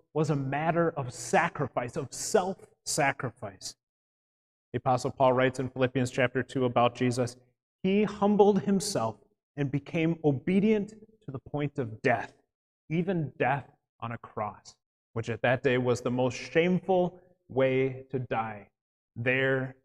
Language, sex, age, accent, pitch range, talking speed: English, male, 30-49, American, 120-170 Hz, 135 wpm